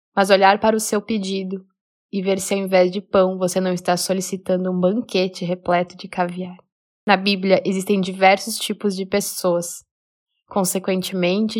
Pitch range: 190-215 Hz